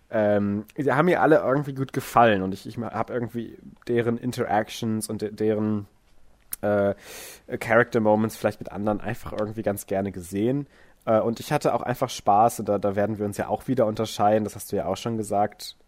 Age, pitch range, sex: 20-39, 100-115 Hz, male